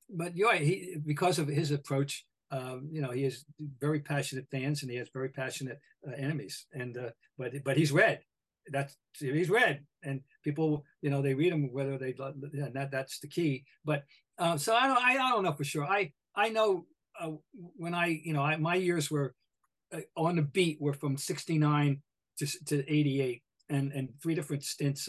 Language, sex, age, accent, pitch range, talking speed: English, male, 50-69, American, 140-170 Hz, 210 wpm